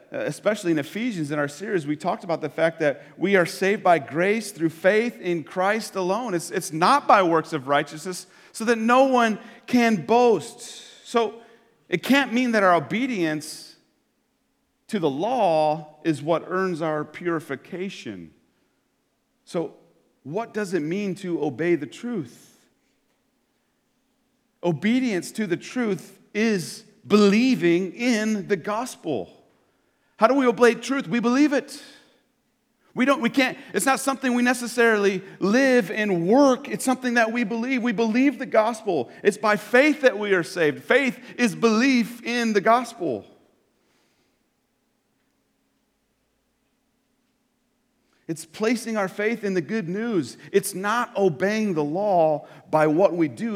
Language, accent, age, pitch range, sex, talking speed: English, American, 40-59, 180-245 Hz, male, 140 wpm